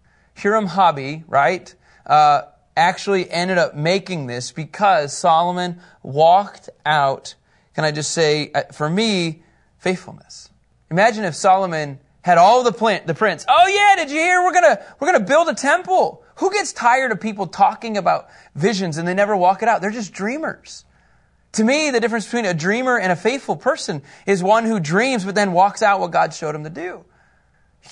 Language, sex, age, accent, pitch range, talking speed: English, male, 30-49, American, 155-215 Hz, 180 wpm